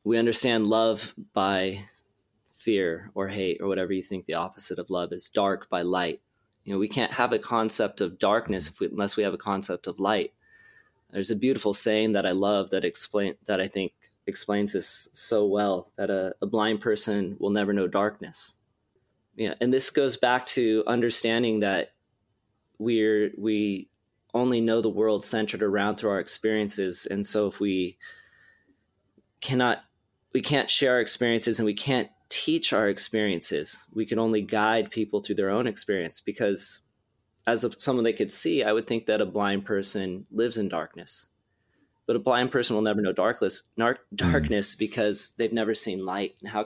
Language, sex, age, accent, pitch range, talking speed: English, male, 20-39, American, 100-115 Hz, 175 wpm